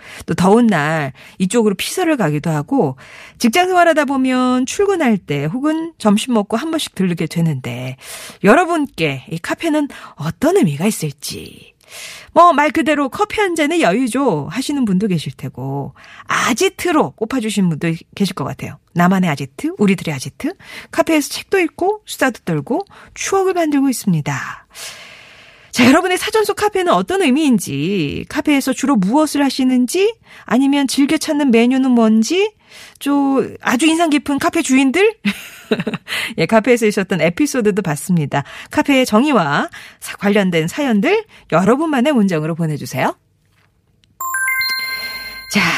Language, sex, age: Korean, female, 40-59